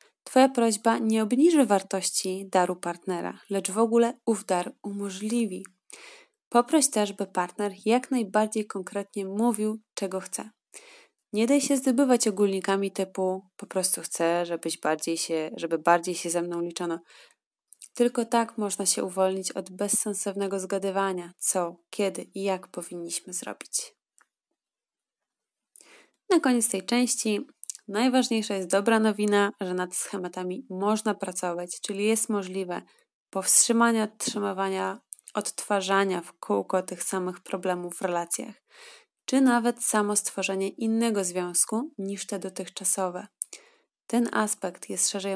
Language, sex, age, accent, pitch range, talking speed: Polish, female, 20-39, native, 185-230 Hz, 125 wpm